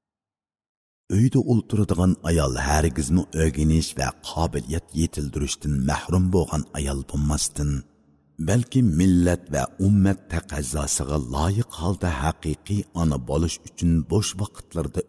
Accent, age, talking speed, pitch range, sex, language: native, 60-79, 105 wpm, 75-90 Hz, male, Turkish